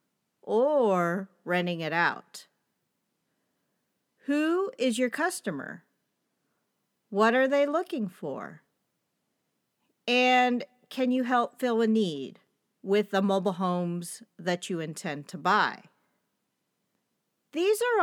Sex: female